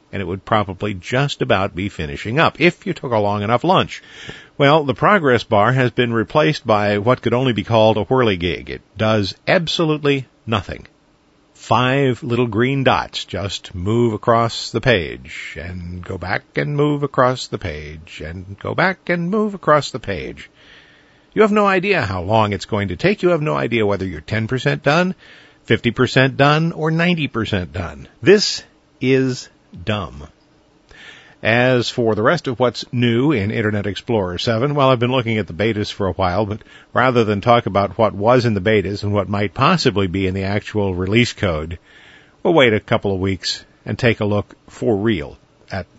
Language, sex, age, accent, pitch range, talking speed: English, male, 50-69, American, 100-145 Hz, 185 wpm